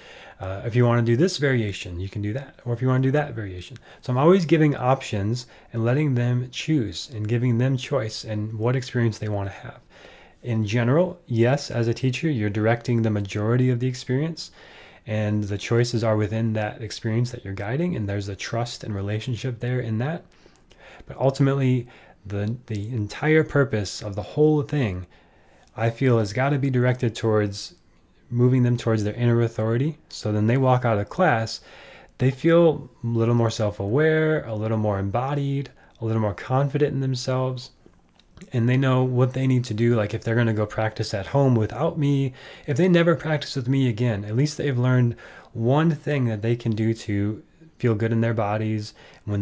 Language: English